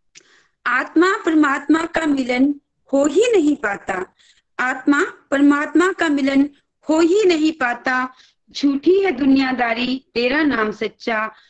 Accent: native